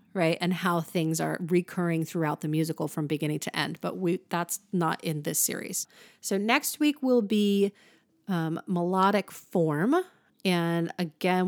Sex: female